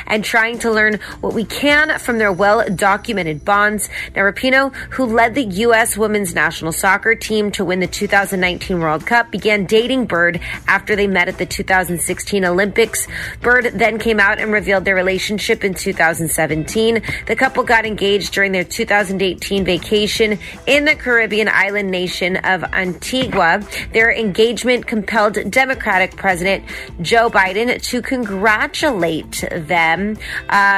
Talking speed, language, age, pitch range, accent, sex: 140 wpm, English, 30-49, 185-230 Hz, American, female